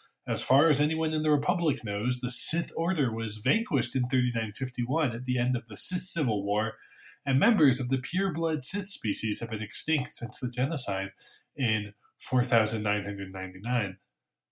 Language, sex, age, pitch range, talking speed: English, male, 20-39, 110-150 Hz, 155 wpm